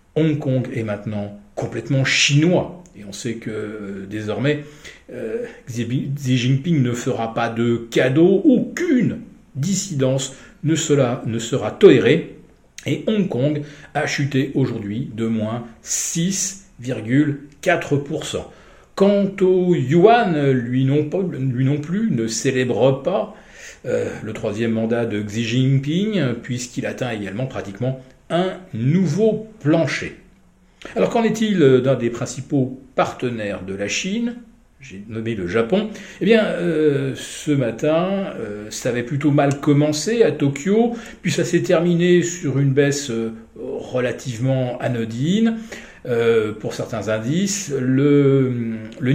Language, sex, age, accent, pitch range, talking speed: French, male, 40-59, French, 120-175 Hz, 125 wpm